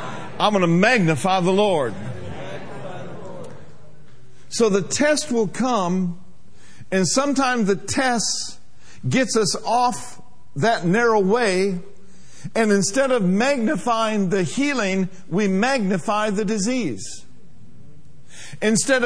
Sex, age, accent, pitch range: male, 50-69, American, 175-240 Hz